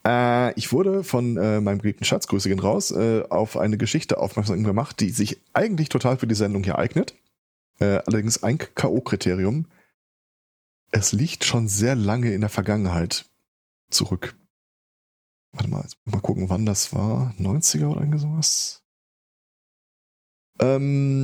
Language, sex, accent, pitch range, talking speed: German, male, German, 100-125 Hz, 140 wpm